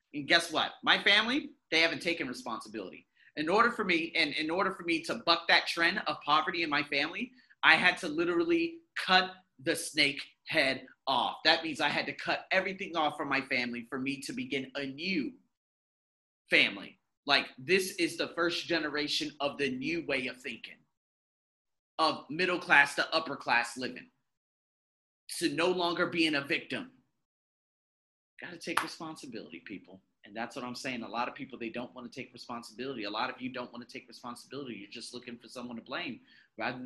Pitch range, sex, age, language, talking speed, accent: 125-185 Hz, male, 30-49, English, 185 wpm, American